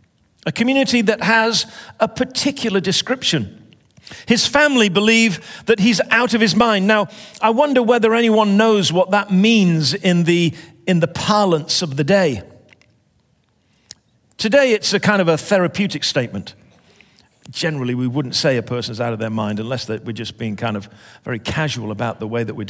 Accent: British